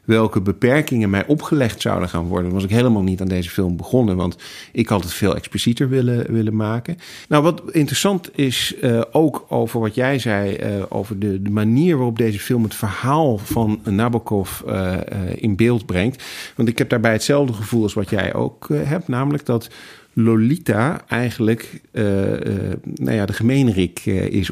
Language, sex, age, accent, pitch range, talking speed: Dutch, male, 40-59, Dutch, 105-130 Hz, 180 wpm